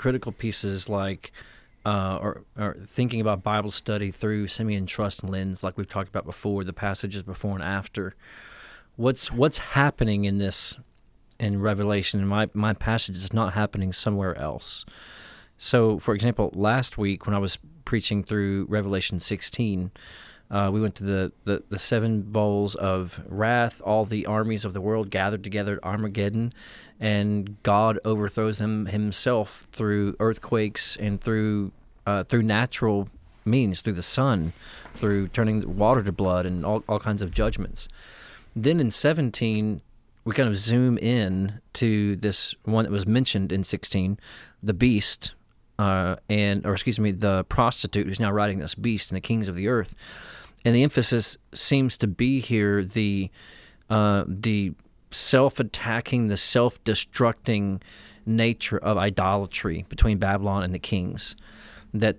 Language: English